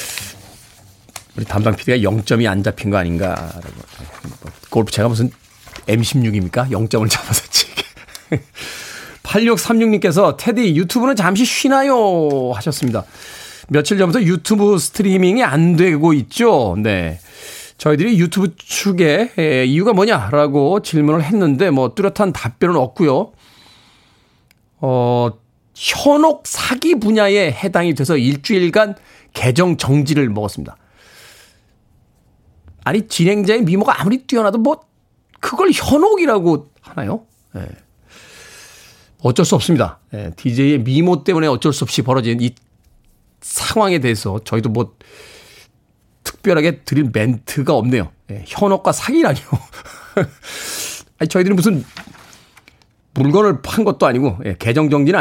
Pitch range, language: 115-185 Hz, Korean